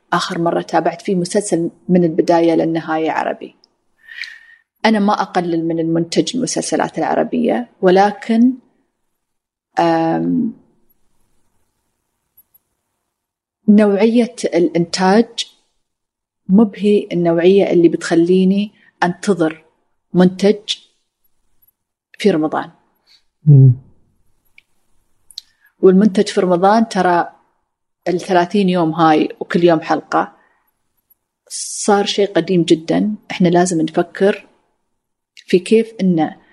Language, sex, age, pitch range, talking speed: Arabic, female, 30-49, 170-210 Hz, 80 wpm